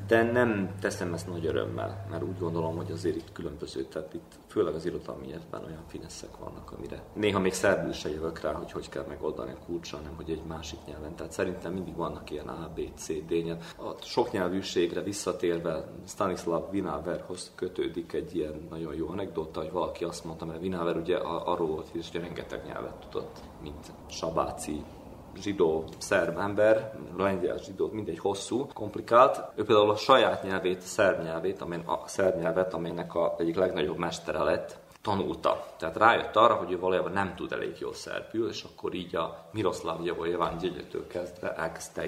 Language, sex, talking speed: Hungarian, male, 170 wpm